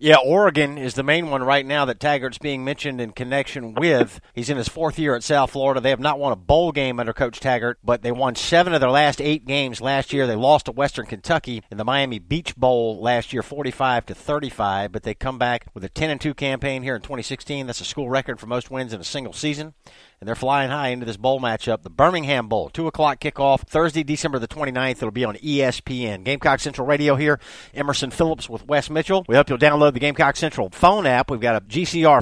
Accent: American